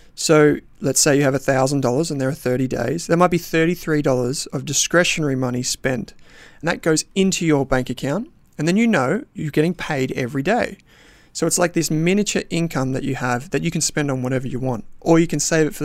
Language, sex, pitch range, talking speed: English, male, 130-165 Hz, 220 wpm